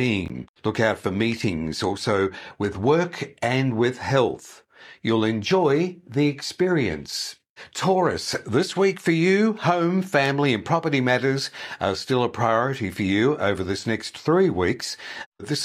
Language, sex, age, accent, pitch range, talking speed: English, male, 50-69, British, 110-145 Hz, 140 wpm